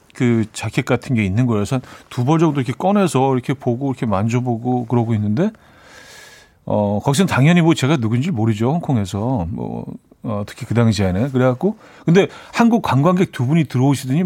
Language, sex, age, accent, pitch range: Korean, male, 40-59, native, 120-165 Hz